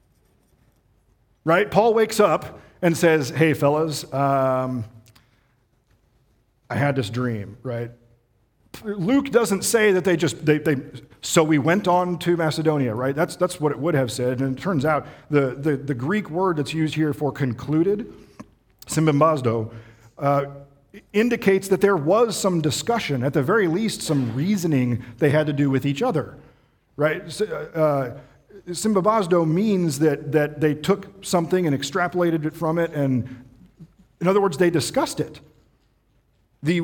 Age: 40-59